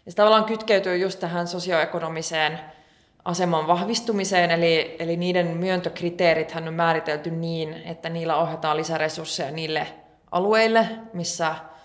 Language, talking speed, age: English, 115 wpm, 20-39